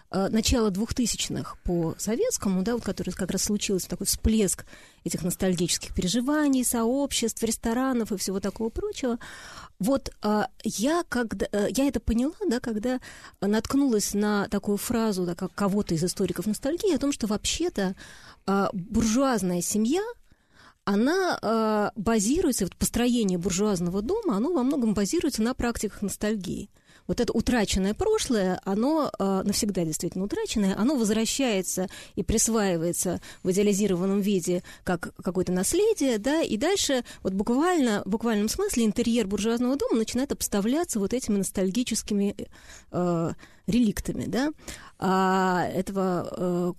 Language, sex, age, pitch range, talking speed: Russian, female, 20-39, 195-245 Hz, 125 wpm